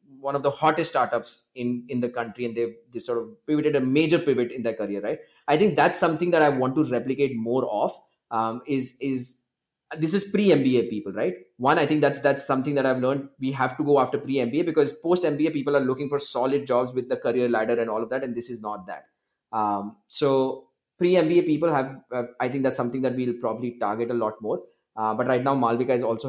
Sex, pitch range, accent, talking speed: male, 120-145 Hz, Indian, 230 wpm